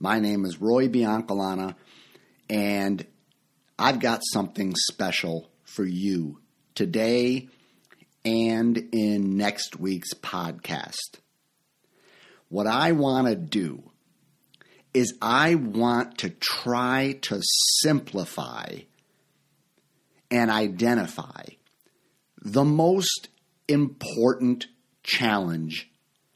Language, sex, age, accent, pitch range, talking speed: English, male, 50-69, American, 100-135 Hz, 80 wpm